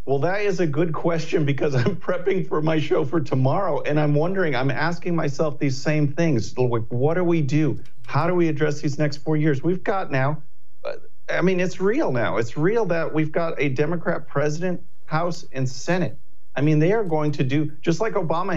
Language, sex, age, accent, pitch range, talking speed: English, male, 50-69, American, 130-155 Hz, 210 wpm